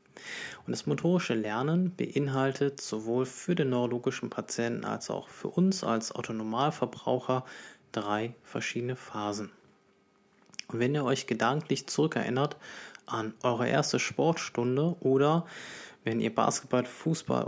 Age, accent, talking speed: 20-39, German, 115 wpm